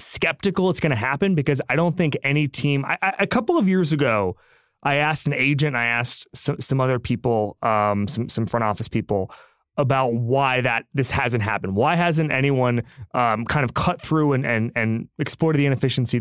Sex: male